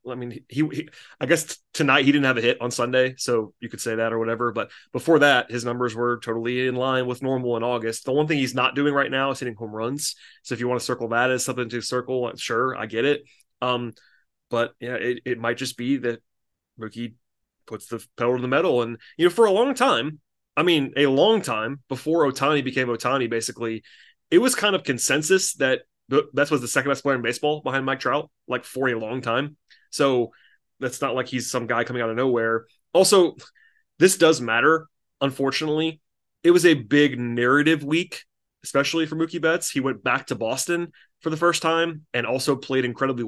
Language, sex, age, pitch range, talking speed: English, male, 20-39, 125-155 Hz, 215 wpm